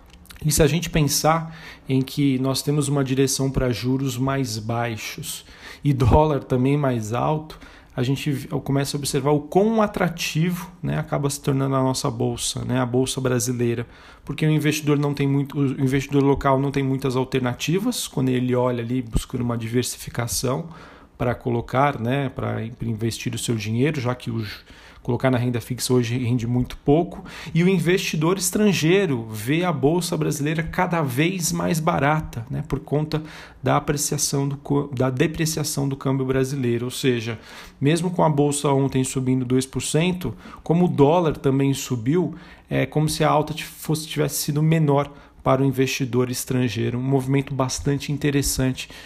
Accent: Brazilian